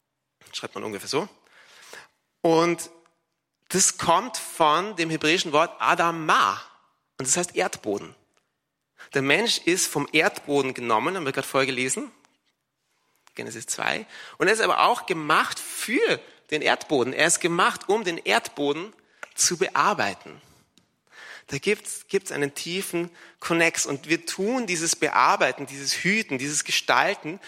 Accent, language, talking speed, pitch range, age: German, English, 130 wpm, 155-205 Hz, 30-49